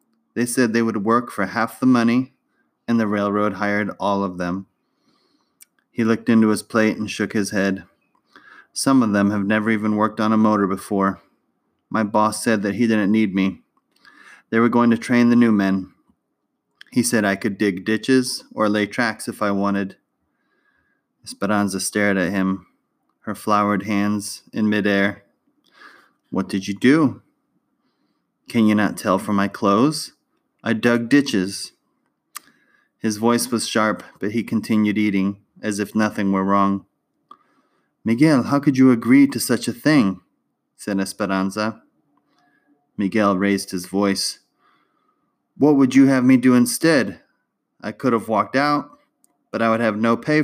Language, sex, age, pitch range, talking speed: English, male, 30-49, 100-120 Hz, 160 wpm